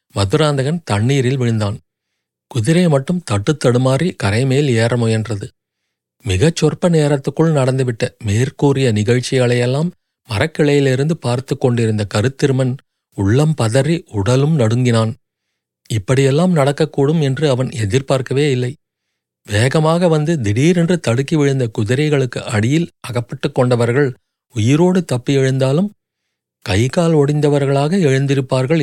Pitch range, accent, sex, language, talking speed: 120-155 Hz, native, male, Tamil, 95 wpm